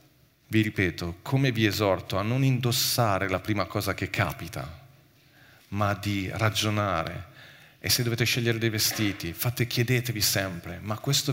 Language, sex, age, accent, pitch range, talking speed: Italian, male, 40-59, native, 95-120 Hz, 140 wpm